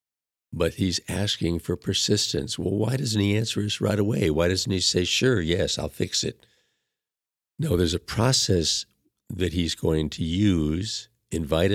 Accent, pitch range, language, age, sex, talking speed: American, 80-105 Hz, English, 50-69, male, 165 wpm